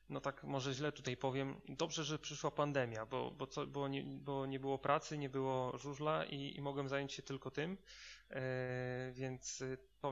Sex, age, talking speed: male, 30-49, 160 wpm